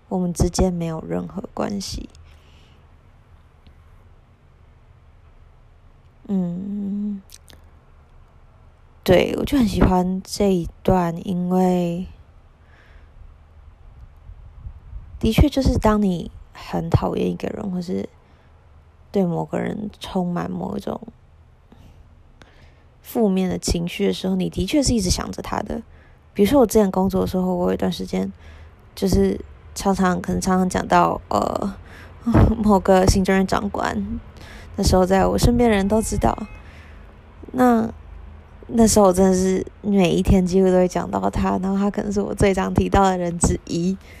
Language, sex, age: Chinese, female, 20-39